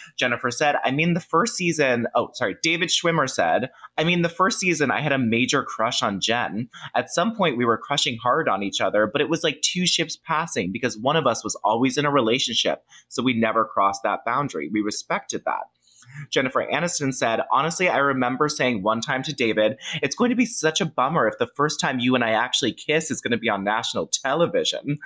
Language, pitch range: English, 115-160 Hz